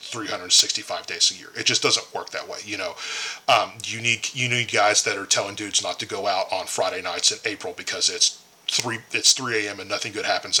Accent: American